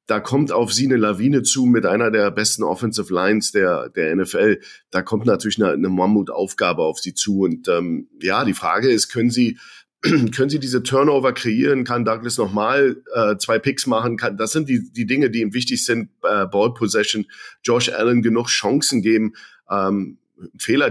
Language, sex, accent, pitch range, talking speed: German, male, German, 100-120 Hz, 185 wpm